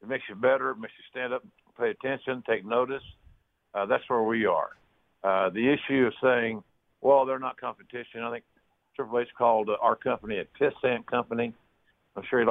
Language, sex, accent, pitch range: English, male, American, 115-140 Hz